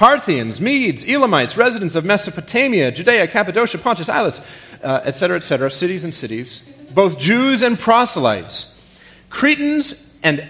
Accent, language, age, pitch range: American, English, 40-59, 125-195 Hz